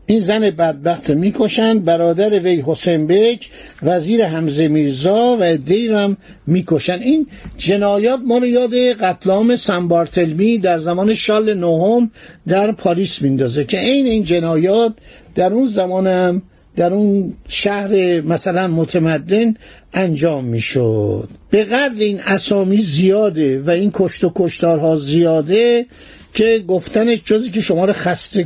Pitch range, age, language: 170-215 Hz, 60-79, Persian